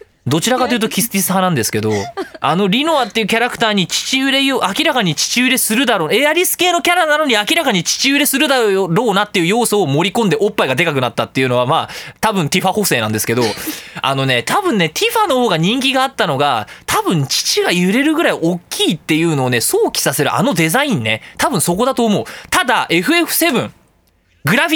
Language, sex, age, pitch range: Japanese, male, 20-39, 165-275 Hz